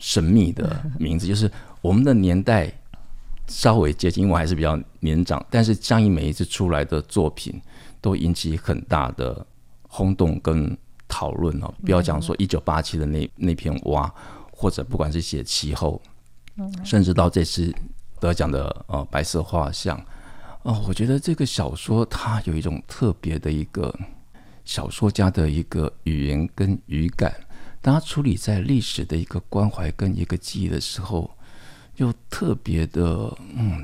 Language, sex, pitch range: Chinese, male, 80-105 Hz